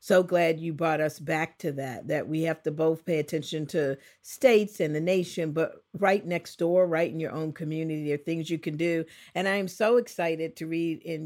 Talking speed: 230 wpm